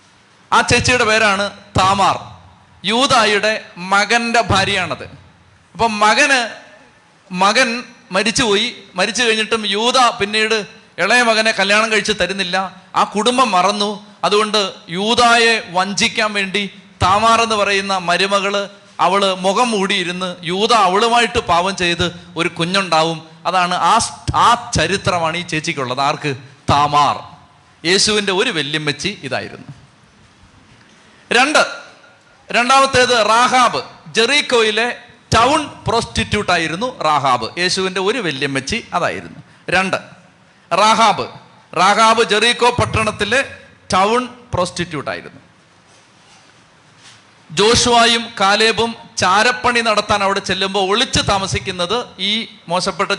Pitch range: 175-225 Hz